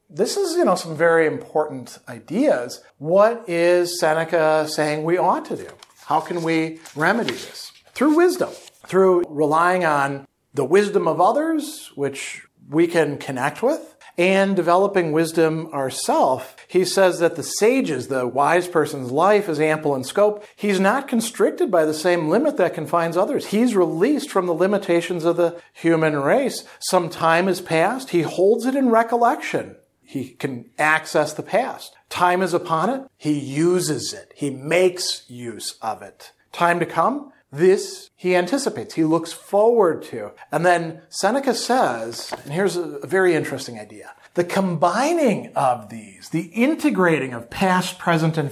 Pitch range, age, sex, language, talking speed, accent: 155-200 Hz, 50-69, male, English, 155 wpm, American